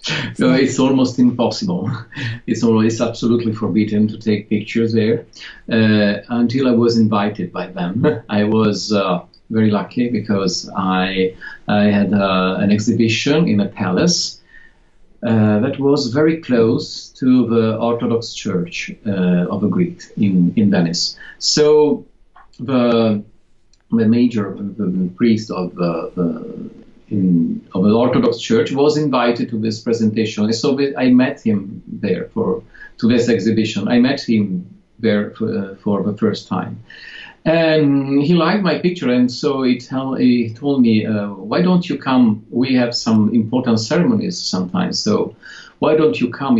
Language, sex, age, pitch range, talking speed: English, male, 50-69, 105-130 Hz, 150 wpm